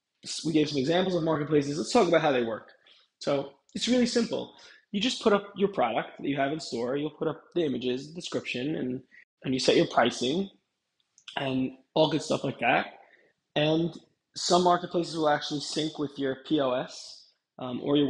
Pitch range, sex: 135-180 Hz, male